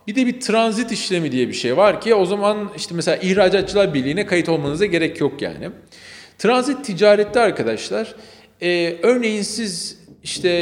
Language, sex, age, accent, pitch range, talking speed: Turkish, male, 40-59, native, 150-210 Hz, 160 wpm